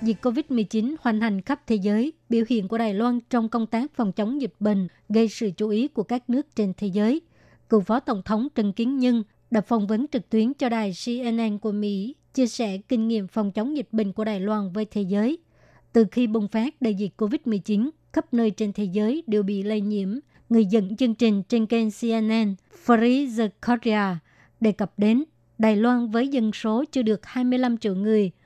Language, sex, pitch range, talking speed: Vietnamese, male, 210-240 Hz, 210 wpm